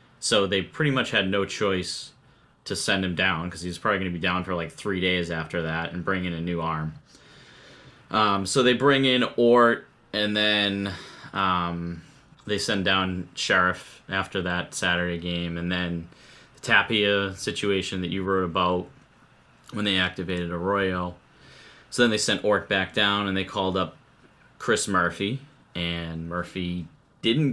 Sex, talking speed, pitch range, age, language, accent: male, 170 wpm, 85-105 Hz, 30-49, English, American